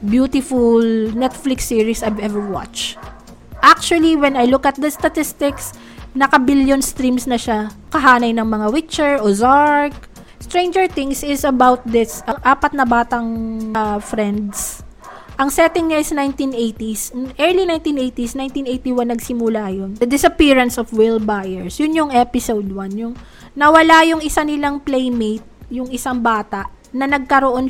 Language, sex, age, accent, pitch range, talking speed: Filipino, female, 20-39, native, 230-285 Hz, 135 wpm